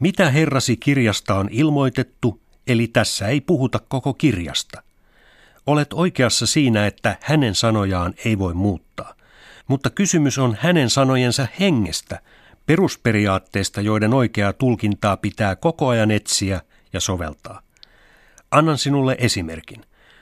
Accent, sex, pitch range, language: native, male, 100-135 Hz, Finnish